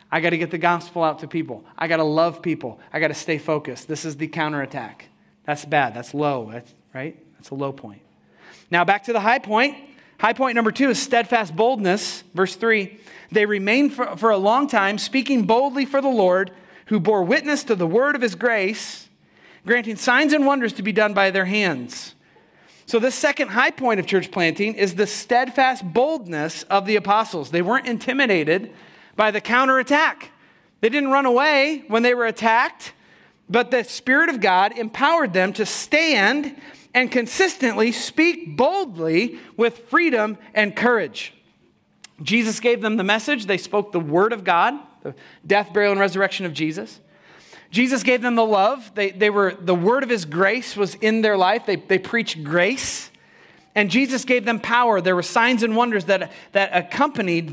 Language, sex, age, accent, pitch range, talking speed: English, male, 30-49, American, 180-245 Hz, 180 wpm